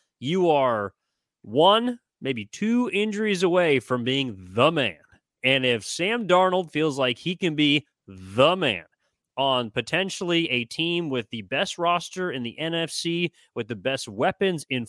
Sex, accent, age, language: male, American, 30-49, English